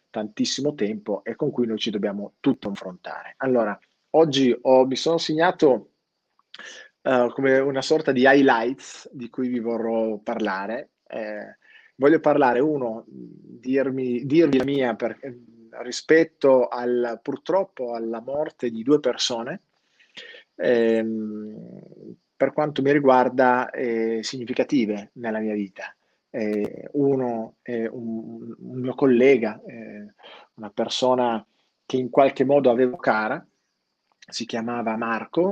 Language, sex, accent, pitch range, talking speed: Italian, male, native, 115-135 Hz, 125 wpm